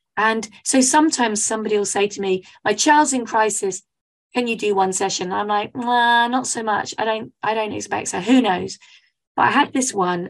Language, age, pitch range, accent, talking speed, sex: English, 30-49, 195-260 Hz, British, 220 wpm, female